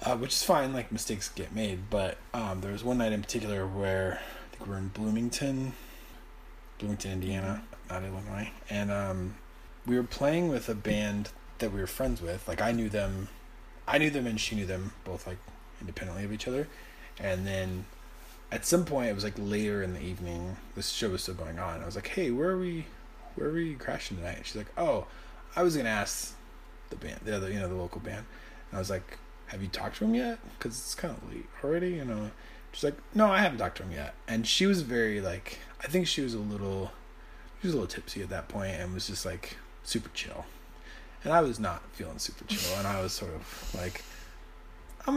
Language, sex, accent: English, male, American